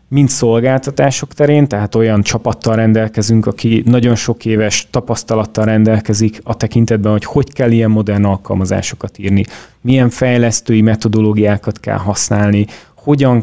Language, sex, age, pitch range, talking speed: Hungarian, male, 30-49, 105-120 Hz, 125 wpm